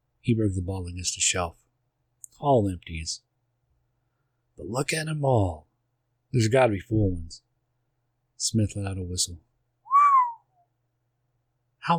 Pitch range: 95-120 Hz